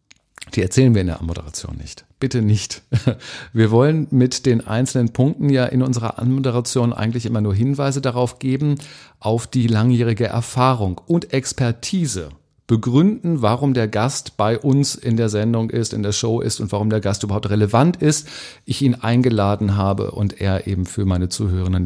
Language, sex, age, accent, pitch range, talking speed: German, male, 50-69, German, 95-135 Hz, 170 wpm